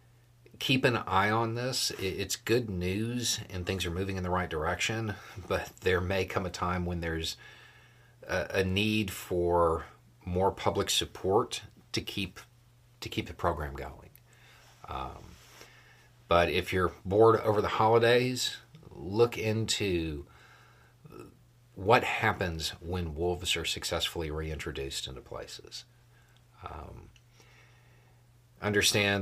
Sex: male